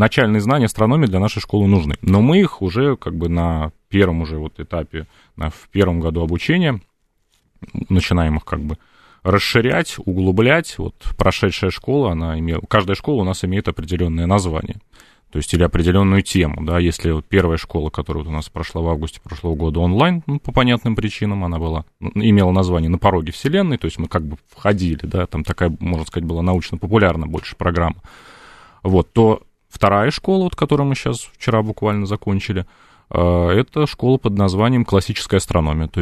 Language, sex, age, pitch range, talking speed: Russian, male, 30-49, 80-105 Hz, 175 wpm